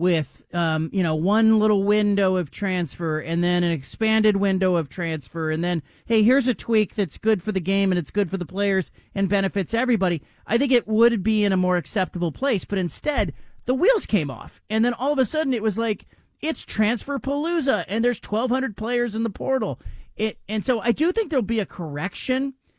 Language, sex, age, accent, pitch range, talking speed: English, male, 40-59, American, 180-225 Hz, 215 wpm